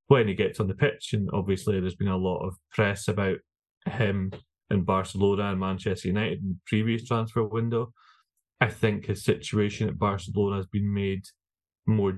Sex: male